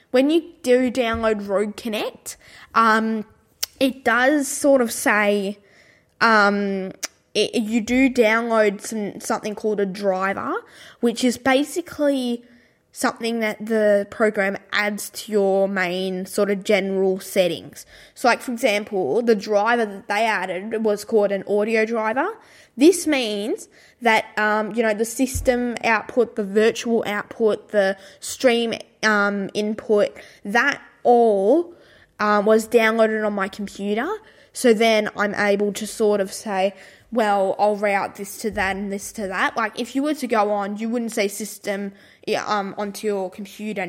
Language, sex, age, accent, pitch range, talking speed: English, female, 10-29, Australian, 205-240 Hz, 150 wpm